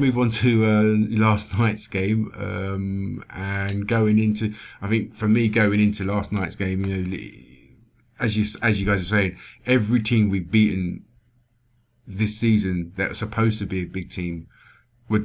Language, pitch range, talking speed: English, 95-110 Hz, 175 wpm